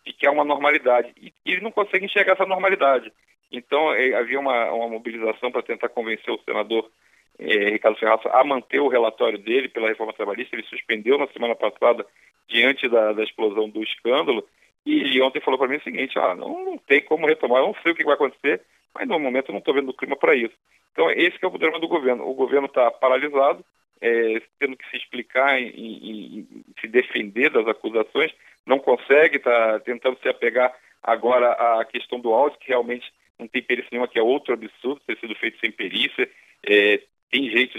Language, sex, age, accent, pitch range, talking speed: Portuguese, male, 40-59, Brazilian, 115-185 Hz, 200 wpm